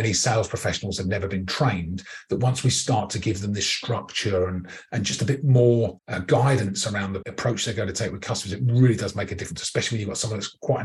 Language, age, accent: English, 40-59, British